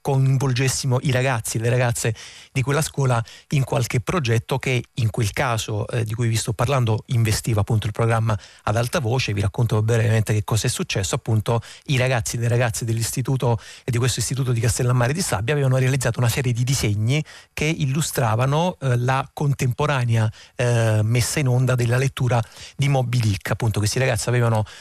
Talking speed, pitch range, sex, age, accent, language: 180 wpm, 110-130 Hz, male, 30-49, native, Italian